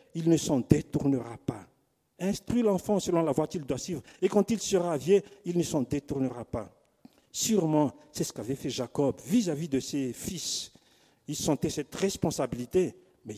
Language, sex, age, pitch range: French, male, 50-69, 135-190 Hz